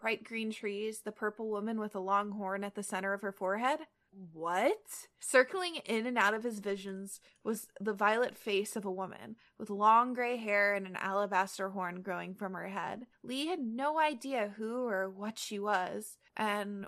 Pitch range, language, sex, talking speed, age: 195-235 Hz, English, female, 190 wpm, 20-39